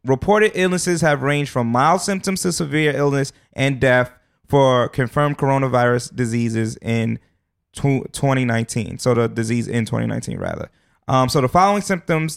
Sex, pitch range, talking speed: male, 125-160 Hz, 140 wpm